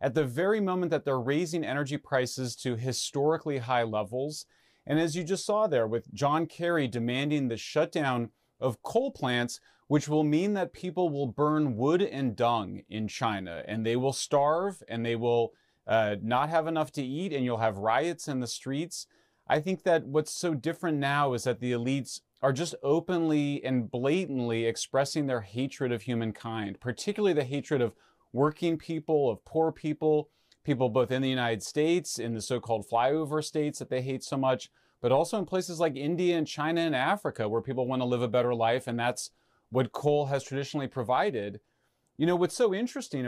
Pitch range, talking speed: 125-160 Hz, 185 wpm